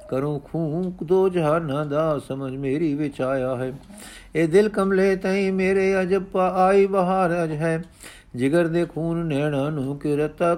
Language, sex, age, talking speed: Punjabi, male, 50-69, 155 wpm